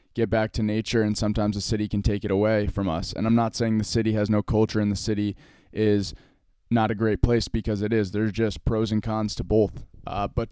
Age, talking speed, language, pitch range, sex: 20-39, 245 wpm, English, 105-115 Hz, male